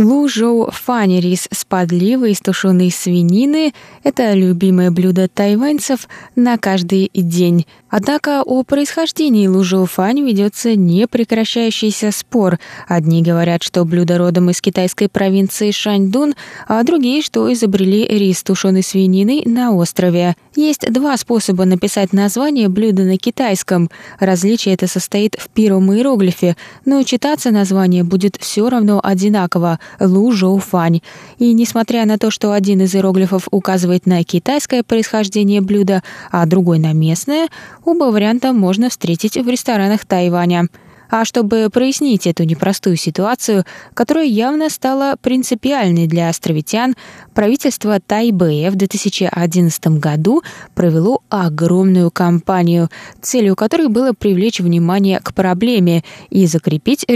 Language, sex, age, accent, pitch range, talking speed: Russian, female, 20-39, native, 180-235 Hz, 120 wpm